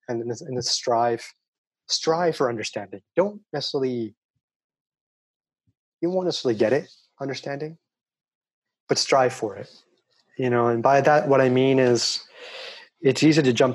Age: 30-49